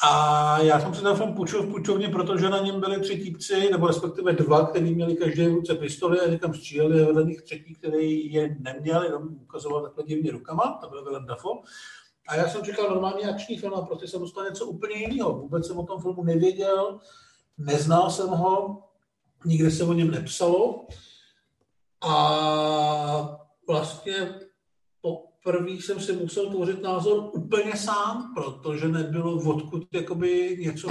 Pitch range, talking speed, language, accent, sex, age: 155-190 Hz, 160 wpm, Czech, native, male, 50-69